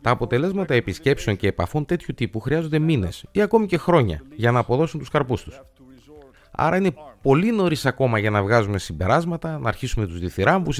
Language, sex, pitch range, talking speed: Greek, male, 95-140 Hz, 180 wpm